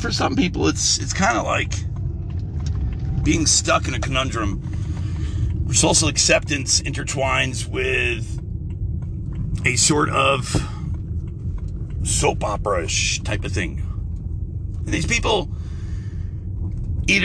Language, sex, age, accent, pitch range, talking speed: English, male, 40-59, American, 90-110 Hz, 105 wpm